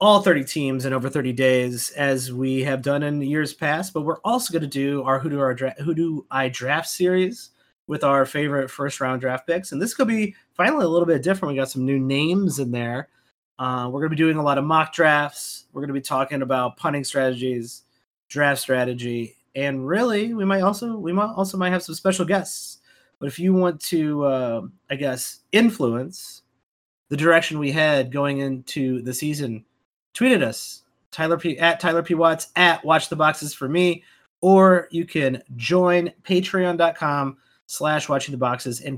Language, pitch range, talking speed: English, 130-170 Hz, 195 wpm